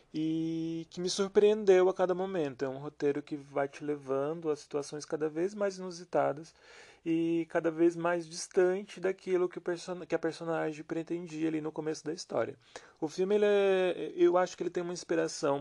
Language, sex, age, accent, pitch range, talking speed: Portuguese, male, 30-49, Brazilian, 140-170 Hz, 175 wpm